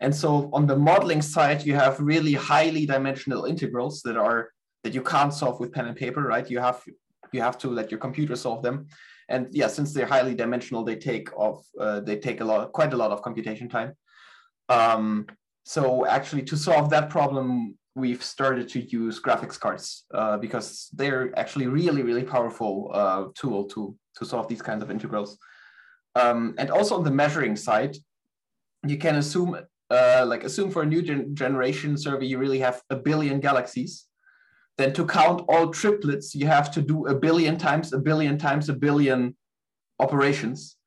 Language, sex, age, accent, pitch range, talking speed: English, male, 20-39, German, 125-150 Hz, 185 wpm